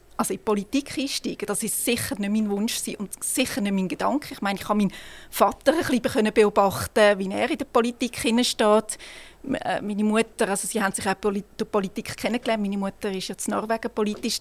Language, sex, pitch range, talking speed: German, female, 205-235 Hz, 205 wpm